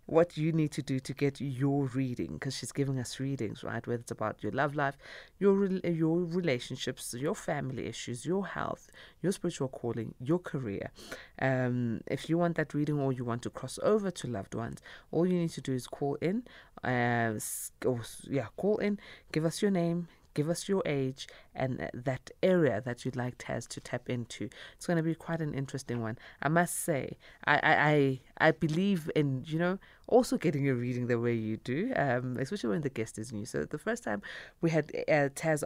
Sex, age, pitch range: female, 20-39, 130-190 Hz